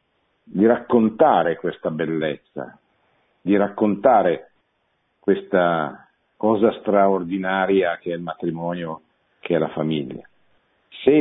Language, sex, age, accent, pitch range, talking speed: Italian, male, 50-69, native, 85-110 Hz, 95 wpm